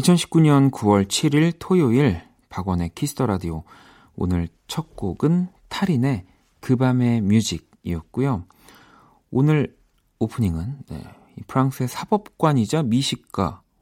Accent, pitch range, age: native, 95-135 Hz, 40-59